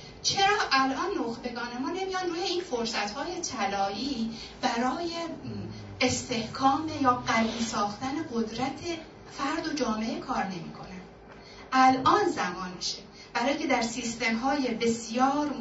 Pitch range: 210-305 Hz